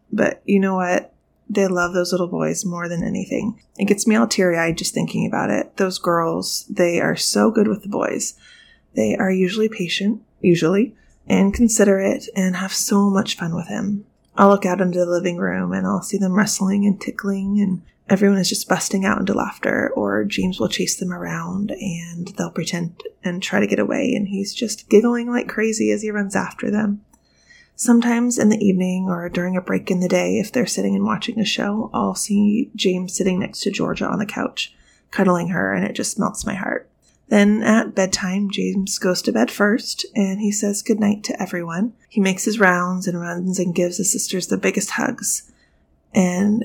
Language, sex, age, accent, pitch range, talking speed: English, female, 20-39, American, 185-215 Hz, 200 wpm